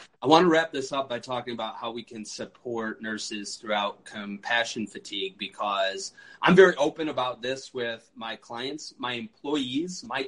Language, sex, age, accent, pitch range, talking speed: English, male, 30-49, American, 110-140 Hz, 170 wpm